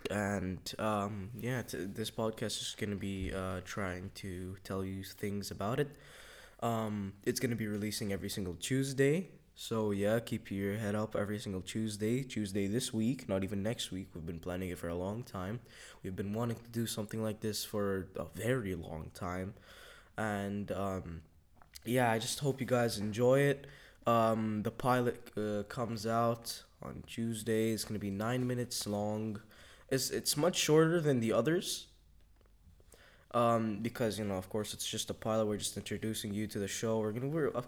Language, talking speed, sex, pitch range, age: English, 185 wpm, male, 100-115 Hz, 10-29